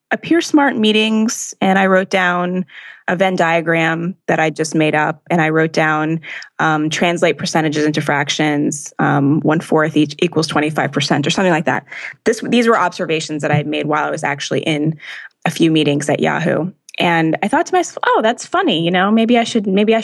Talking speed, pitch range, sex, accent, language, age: 205 wpm, 155-195 Hz, female, American, English, 20-39